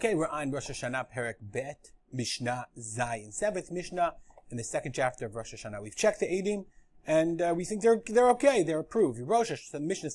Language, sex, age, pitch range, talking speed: English, male, 30-49, 140-210 Hz, 205 wpm